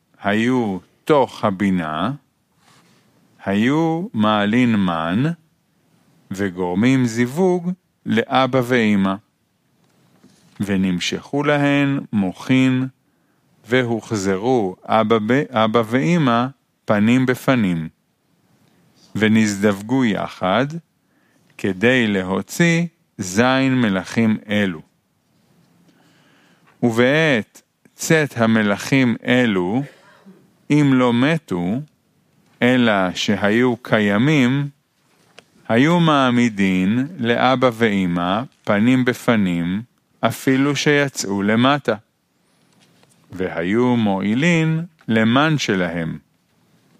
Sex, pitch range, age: male, 100-135 Hz, 40-59